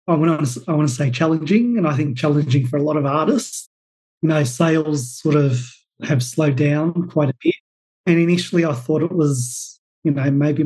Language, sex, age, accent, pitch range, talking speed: English, male, 30-49, Australian, 150-175 Hz, 210 wpm